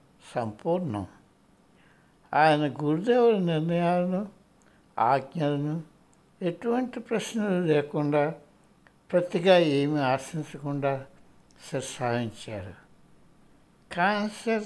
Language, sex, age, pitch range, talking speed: Hindi, male, 60-79, 130-180 Hz, 45 wpm